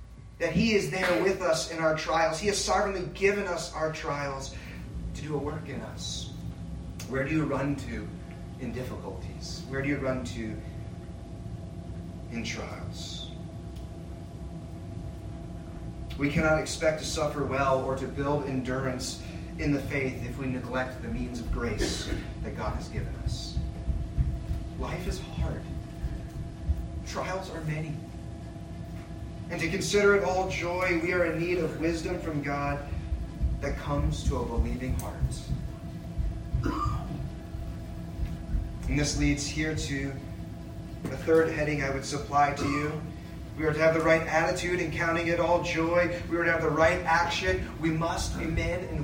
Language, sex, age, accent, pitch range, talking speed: English, male, 30-49, American, 100-165 Hz, 150 wpm